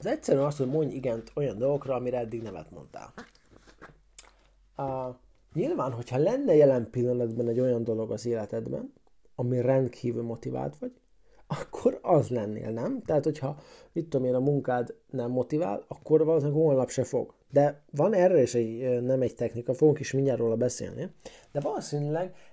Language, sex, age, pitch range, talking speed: Hungarian, male, 30-49, 125-155 Hz, 160 wpm